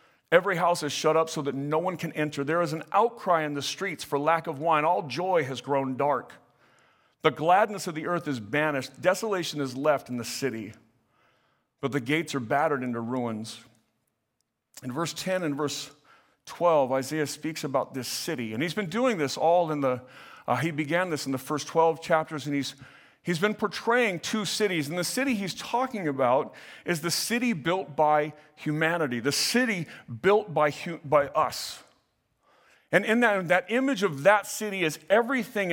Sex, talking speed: male, 185 wpm